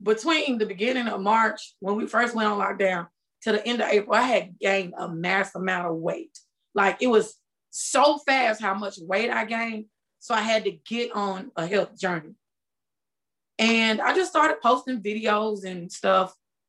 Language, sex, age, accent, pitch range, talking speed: English, female, 20-39, American, 200-275 Hz, 185 wpm